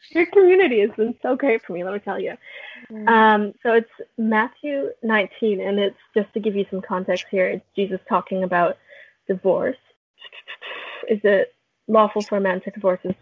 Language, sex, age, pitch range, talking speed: English, female, 20-39, 185-215 Hz, 180 wpm